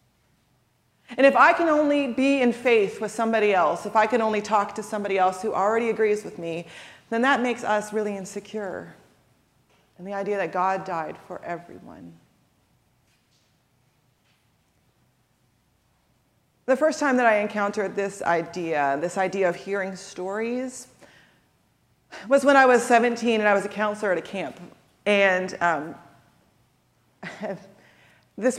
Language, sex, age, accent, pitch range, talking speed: English, female, 30-49, American, 195-250 Hz, 145 wpm